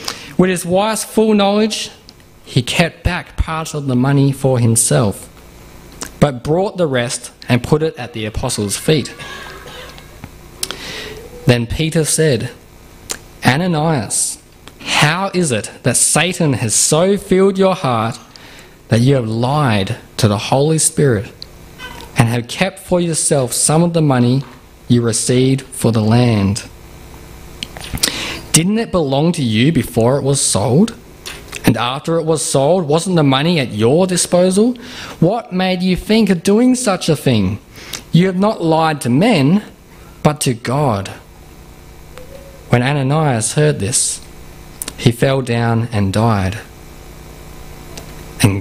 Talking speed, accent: 135 wpm, Australian